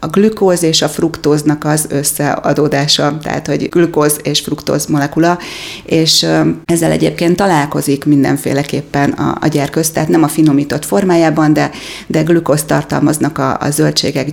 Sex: female